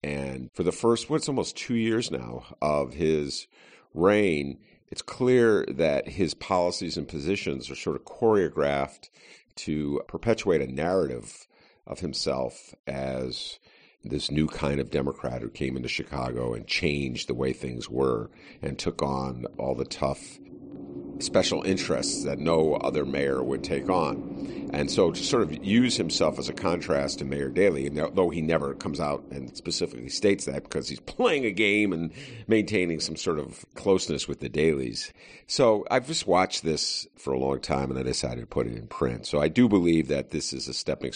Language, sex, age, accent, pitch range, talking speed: English, male, 50-69, American, 65-80 Hz, 180 wpm